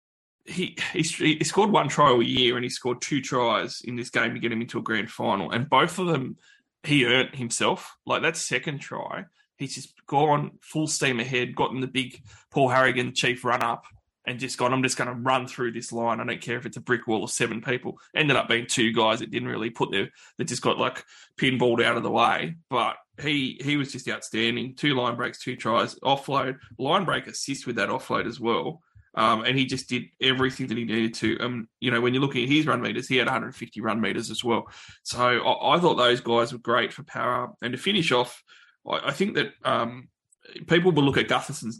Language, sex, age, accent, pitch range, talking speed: English, male, 20-39, Australian, 115-135 Hz, 230 wpm